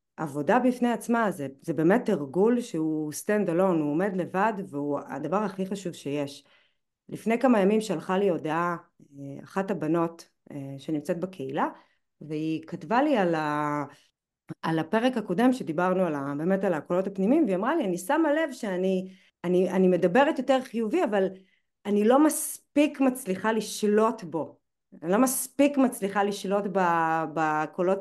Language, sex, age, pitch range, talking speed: Hebrew, female, 30-49, 170-240 Hz, 140 wpm